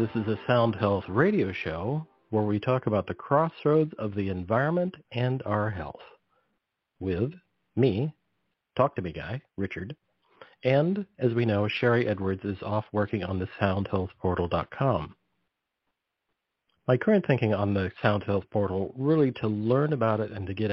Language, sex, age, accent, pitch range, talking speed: English, male, 40-59, American, 100-125 Hz, 155 wpm